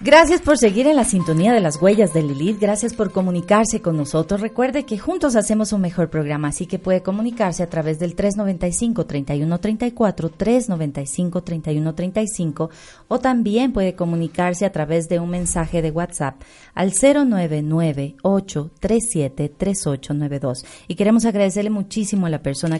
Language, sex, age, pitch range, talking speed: Spanish, female, 30-49, 155-210 Hz, 135 wpm